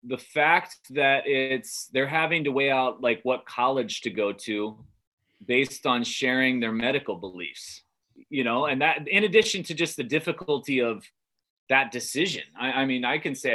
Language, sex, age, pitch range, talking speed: English, male, 30-49, 125-160 Hz, 175 wpm